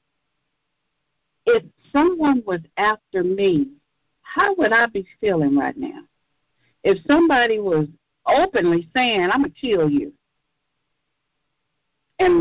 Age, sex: 60-79, female